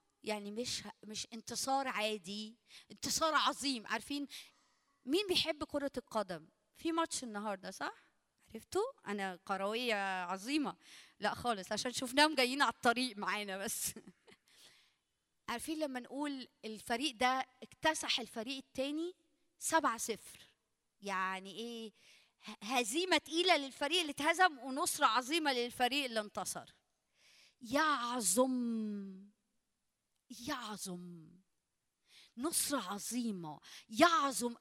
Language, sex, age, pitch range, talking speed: Arabic, female, 20-39, 230-325 Hz, 95 wpm